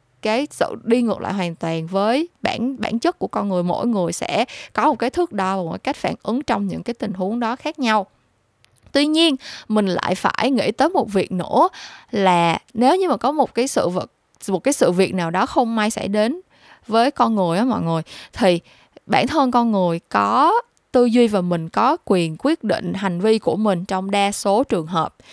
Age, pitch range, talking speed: 20-39, 190-255 Hz, 220 wpm